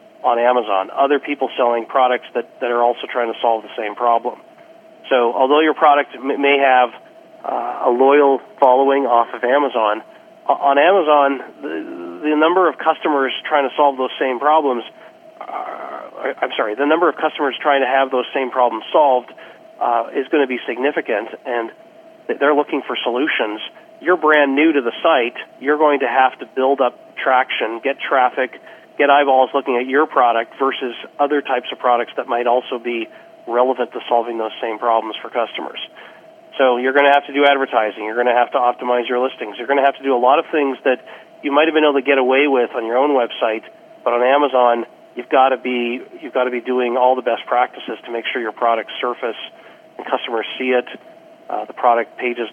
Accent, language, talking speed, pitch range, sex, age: American, English, 200 wpm, 120-145 Hz, male, 40-59